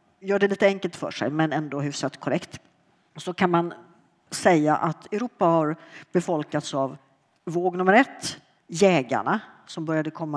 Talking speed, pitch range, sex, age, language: 150 wpm, 145-190 Hz, female, 50-69, Swedish